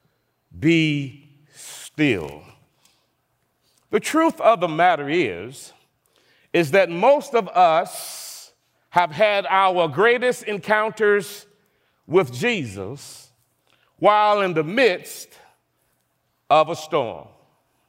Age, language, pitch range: 40-59, English, 165-245 Hz